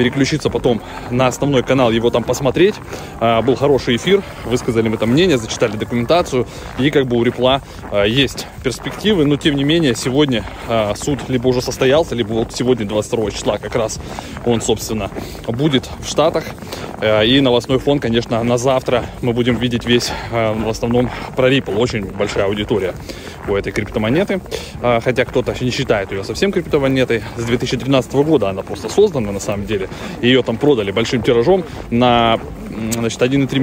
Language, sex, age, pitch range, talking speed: Russian, male, 20-39, 115-140 Hz, 170 wpm